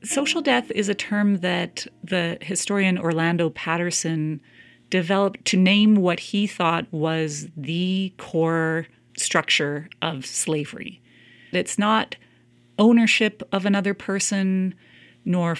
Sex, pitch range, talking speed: female, 155-185 Hz, 110 wpm